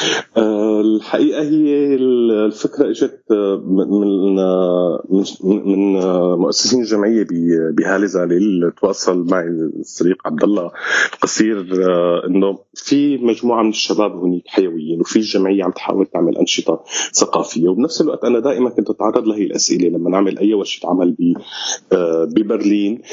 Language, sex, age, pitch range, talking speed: Arabic, male, 30-49, 100-135 Hz, 115 wpm